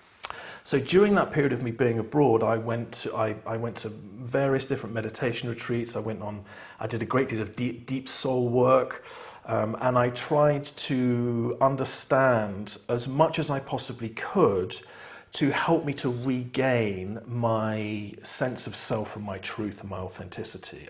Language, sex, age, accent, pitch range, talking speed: English, male, 40-59, British, 105-130 Hz, 170 wpm